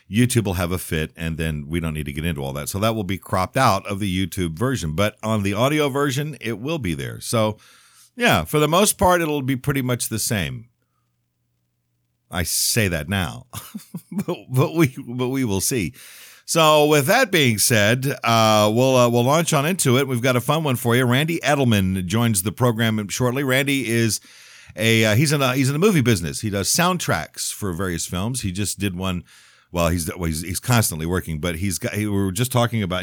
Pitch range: 95-135 Hz